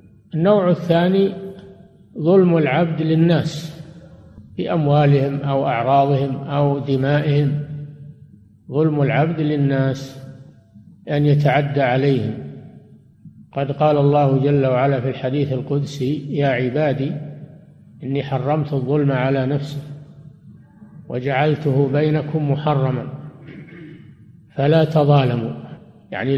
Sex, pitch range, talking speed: male, 140-165 Hz, 85 wpm